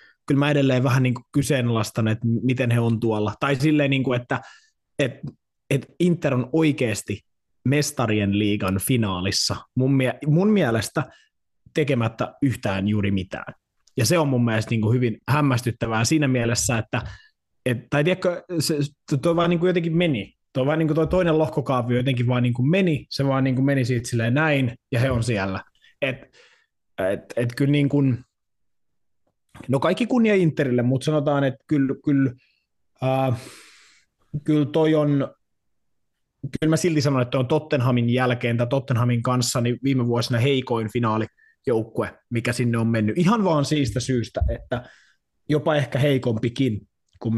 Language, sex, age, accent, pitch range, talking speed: Finnish, male, 20-39, native, 115-145 Hz, 155 wpm